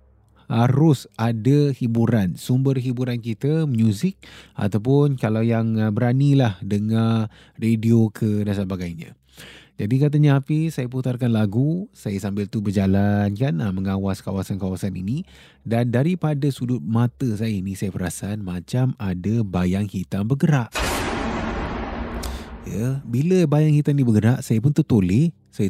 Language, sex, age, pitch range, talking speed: Malay, male, 20-39, 100-140 Hz, 125 wpm